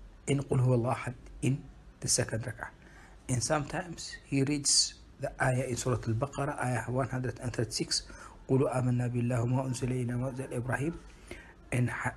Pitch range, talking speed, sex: 115-135 Hz, 150 wpm, male